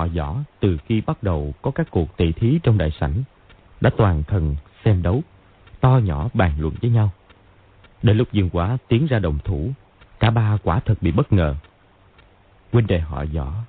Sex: male